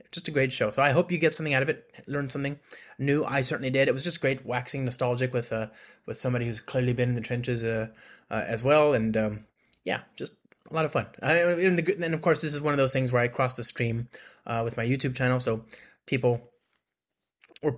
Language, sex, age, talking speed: English, male, 30-49, 245 wpm